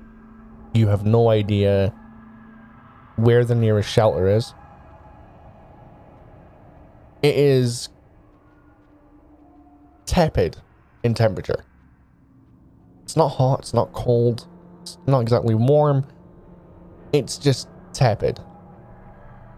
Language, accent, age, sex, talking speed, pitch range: English, American, 20-39, male, 85 wpm, 95-130 Hz